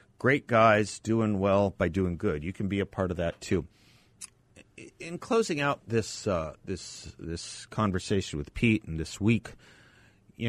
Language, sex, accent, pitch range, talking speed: English, male, American, 90-115 Hz, 165 wpm